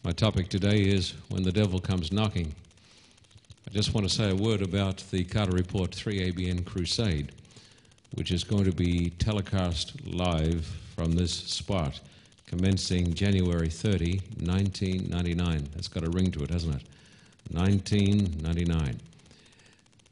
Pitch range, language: 85-105 Hz, English